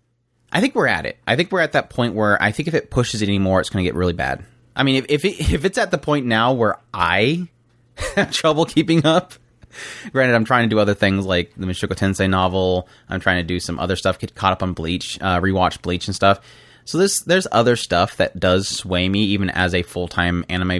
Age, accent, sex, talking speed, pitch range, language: 30-49, American, male, 245 wpm, 95-125 Hz, English